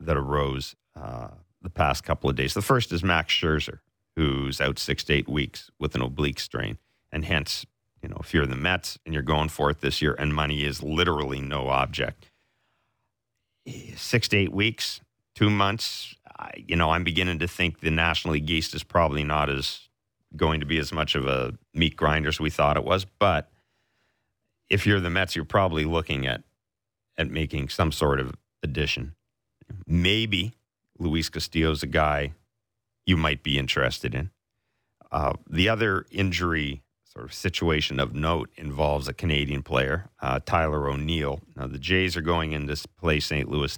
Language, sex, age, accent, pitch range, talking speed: English, male, 40-59, American, 70-90 Hz, 175 wpm